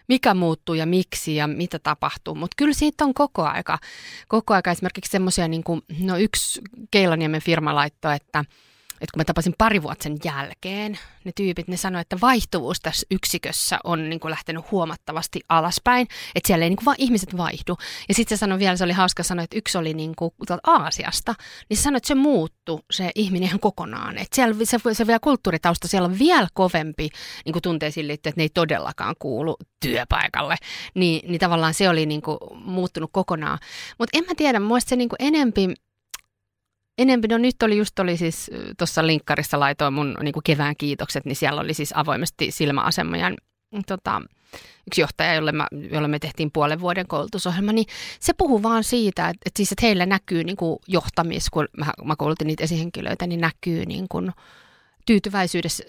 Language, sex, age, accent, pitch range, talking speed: Finnish, female, 30-49, native, 160-215 Hz, 175 wpm